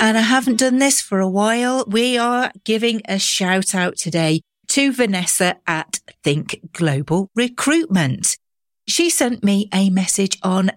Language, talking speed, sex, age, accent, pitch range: English, 150 wpm, female, 40-59, British, 150-220 Hz